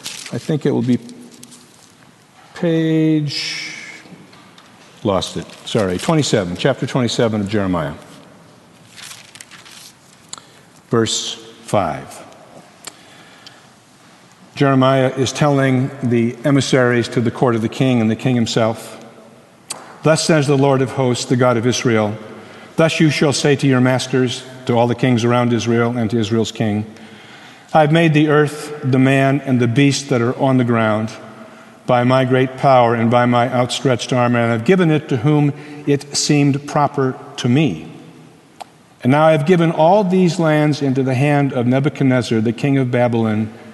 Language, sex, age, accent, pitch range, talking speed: English, male, 50-69, American, 115-145 Hz, 150 wpm